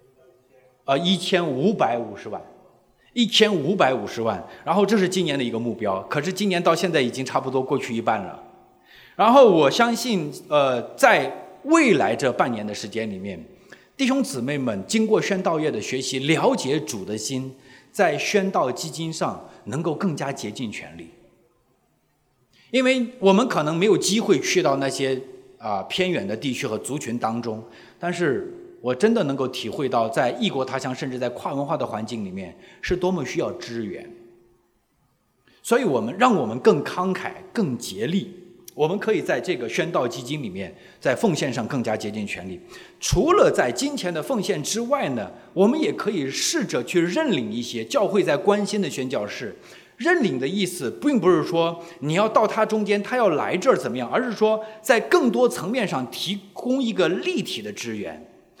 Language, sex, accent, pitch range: English, male, Chinese, 130-220 Hz